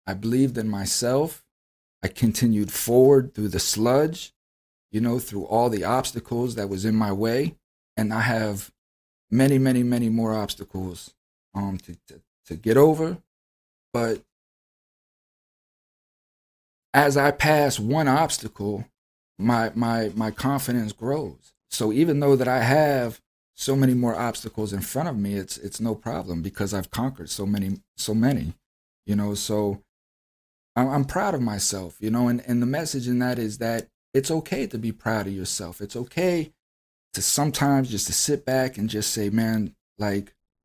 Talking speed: 160 wpm